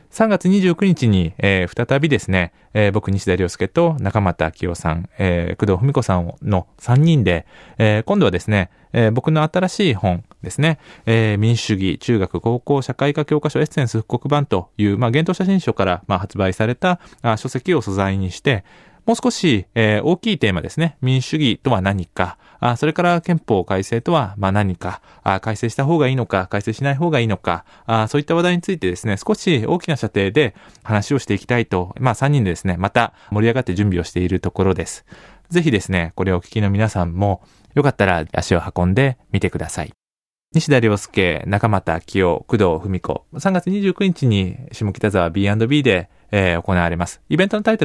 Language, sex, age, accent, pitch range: Japanese, male, 20-39, native, 95-145 Hz